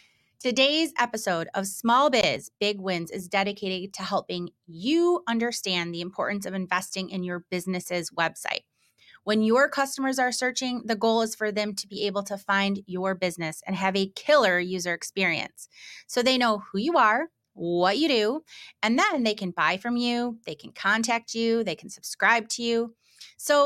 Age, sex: 30-49, female